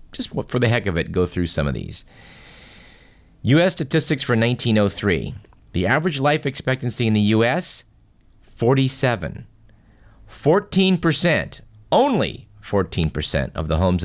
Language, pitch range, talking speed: English, 95-135 Hz, 125 wpm